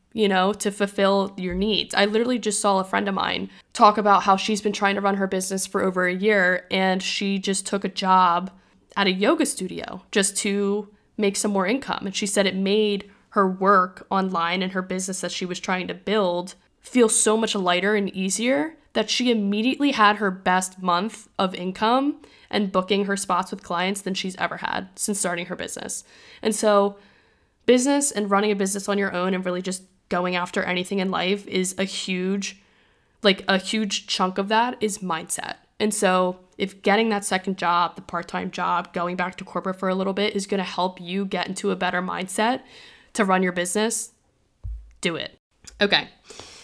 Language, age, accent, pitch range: English, 10-29, American, 185-210 Hz